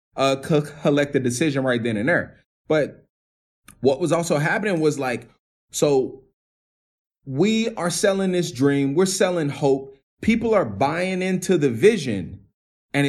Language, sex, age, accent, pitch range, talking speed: English, male, 20-39, American, 115-155 Hz, 145 wpm